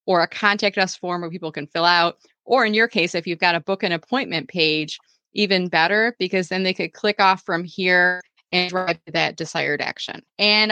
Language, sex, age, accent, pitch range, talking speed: English, female, 20-39, American, 170-215 Hz, 215 wpm